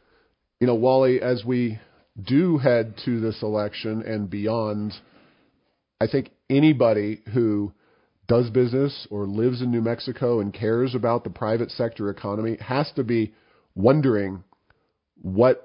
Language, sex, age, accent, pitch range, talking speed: English, male, 40-59, American, 105-130 Hz, 135 wpm